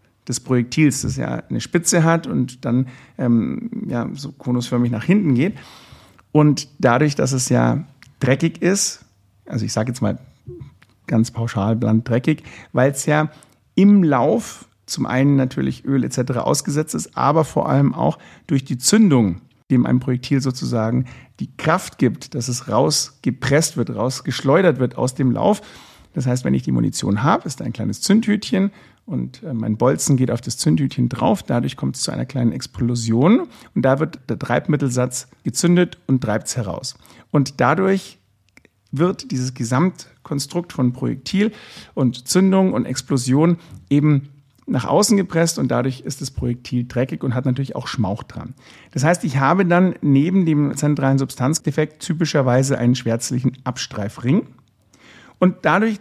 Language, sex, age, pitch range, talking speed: German, male, 50-69, 125-155 Hz, 155 wpm